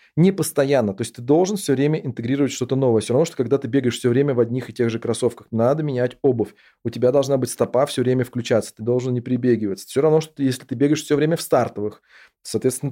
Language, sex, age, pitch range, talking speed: Russian, male, 20-39, 115-145 Hz, 240 wpm